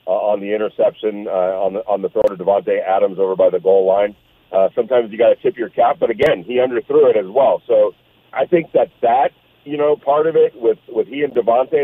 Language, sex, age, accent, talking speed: English, male, 40-59, American, 245 wpm